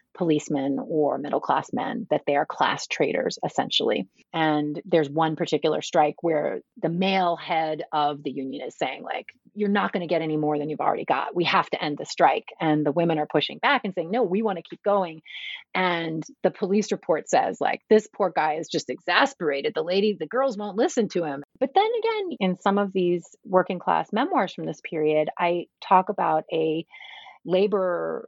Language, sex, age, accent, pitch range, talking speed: English, female, 30-49, American, 155-200 Hz, 195 wpm